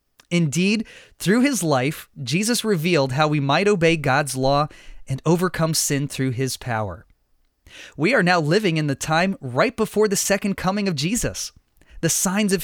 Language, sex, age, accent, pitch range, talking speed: English, male, 30-49, American, 135-185 Hz, 165 wpm